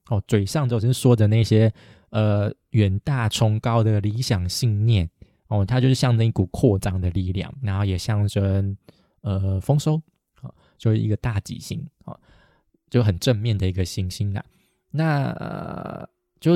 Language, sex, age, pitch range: Chinese, male, 20-39, 105-130 Hz